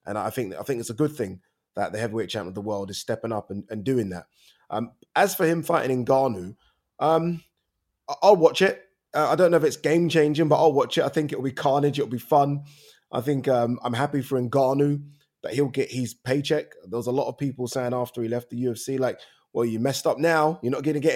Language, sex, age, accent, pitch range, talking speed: English, male, 20-39, British, 120-155 Hz, 245 wpm